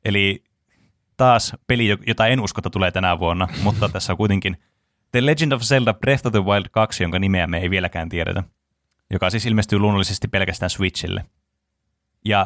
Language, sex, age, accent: Finnish, male, 20-39, native